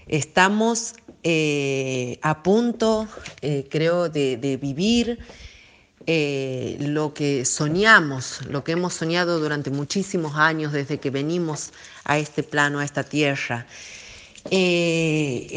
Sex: female